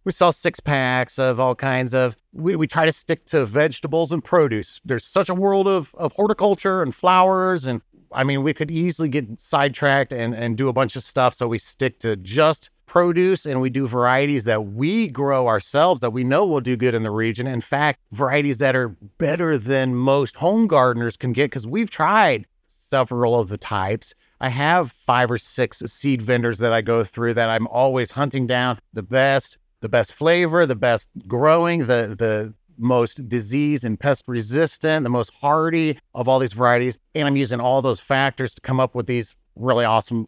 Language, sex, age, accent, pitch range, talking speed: English, male, 30-49, American, 120-145 Hz, 200 wpm